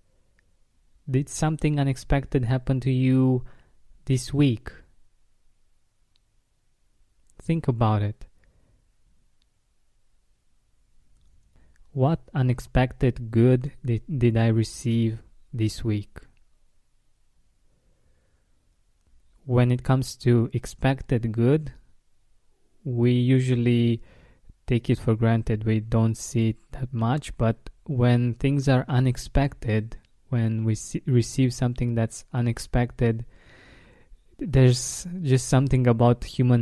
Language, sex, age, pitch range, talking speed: English, male, 20-39, 110-125 Hz, 90 wpm